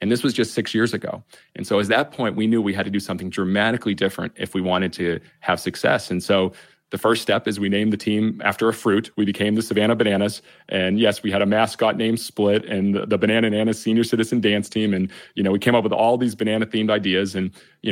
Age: 30-49